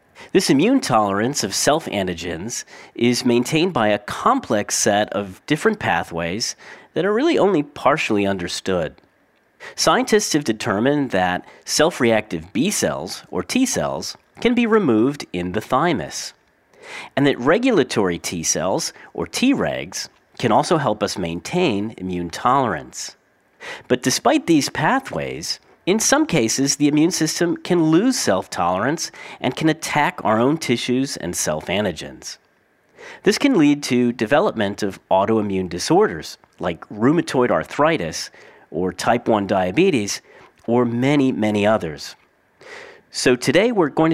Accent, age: American, 40-59